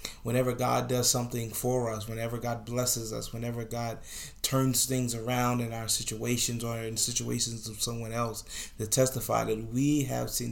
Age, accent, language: 30-49, American, English